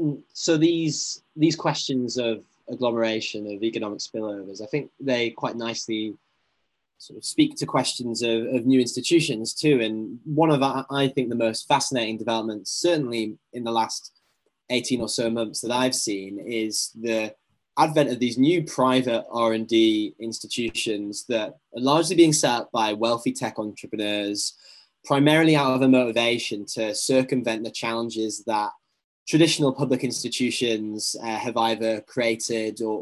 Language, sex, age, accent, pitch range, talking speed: English, male, 10-29, British, 110-130 Hz, 150 wpm